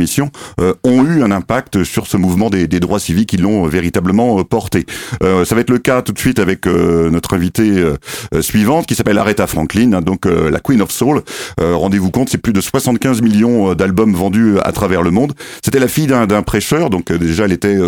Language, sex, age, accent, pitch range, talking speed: French, male, 40-59, French, 90-115 Hz, 220 wpm